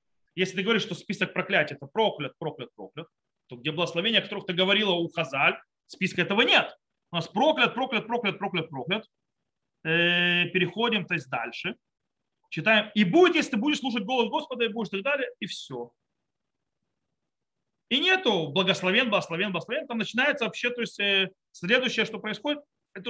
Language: Russian